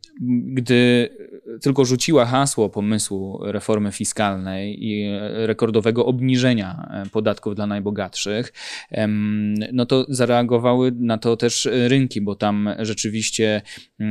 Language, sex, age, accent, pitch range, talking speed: Polish, male, 20-39, native, 110-125 Hz, 100 wpm